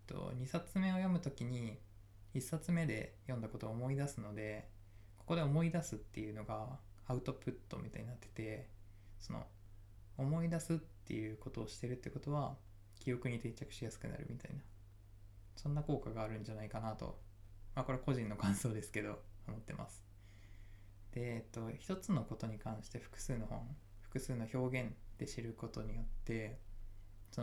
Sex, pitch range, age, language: male, 100-130 Hz, 20-39, Japanese